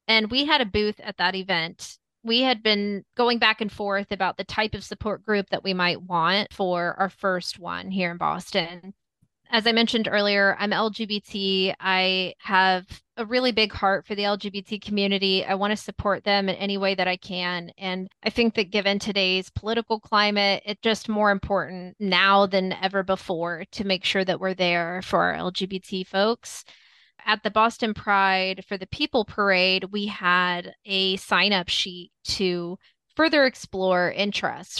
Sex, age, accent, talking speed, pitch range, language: female, 20-39, American, 175 wpm, 185-220 Hz, English